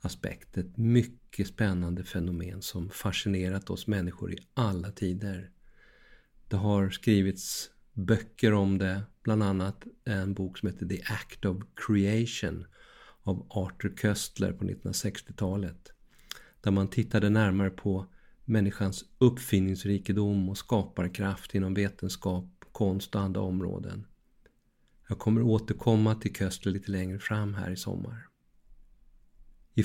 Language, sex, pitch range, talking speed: Swedish, male, 95-110 Hz, 120 wpm